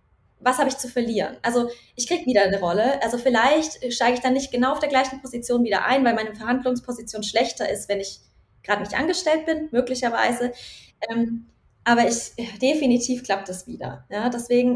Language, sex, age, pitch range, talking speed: German, female, 20-39, 230-265 Hz, 185 wpm